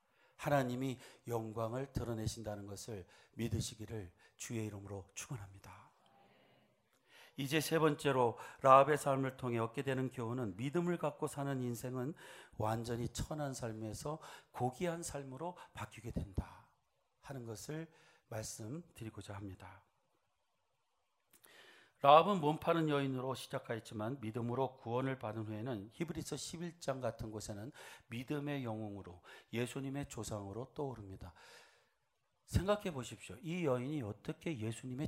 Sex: male